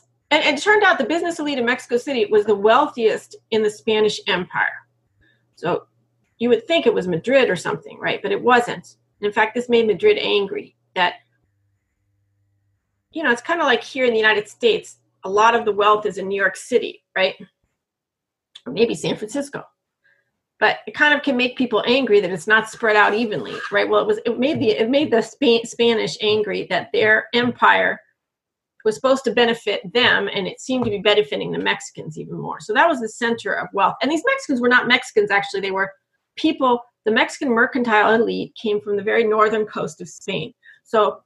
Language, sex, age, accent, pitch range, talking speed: English, female, 40-59, American, 205-265 Hz, 200 wpm